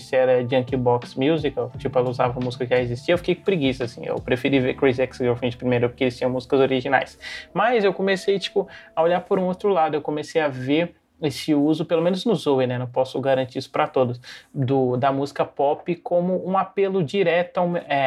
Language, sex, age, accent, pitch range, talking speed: Portuguese, male, 20-39, Brazilian, 130-160 Hz, 215 wpm